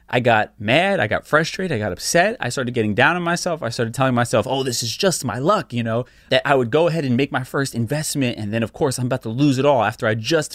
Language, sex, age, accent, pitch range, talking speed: English, male, 20-39, American, 110-140 Hz, 285 wpm